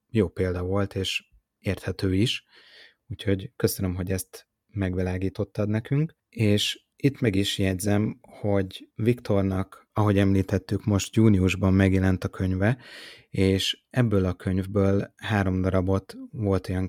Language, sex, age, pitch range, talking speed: Hungarian, male, 30-49, 95-105 Hz, 120 wpm